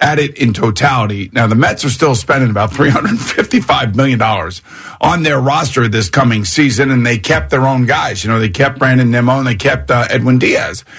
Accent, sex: American, male